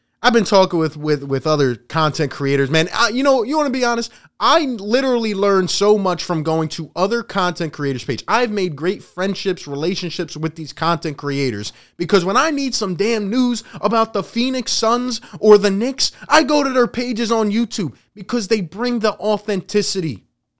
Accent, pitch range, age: American, 165-235 Hz, 20-39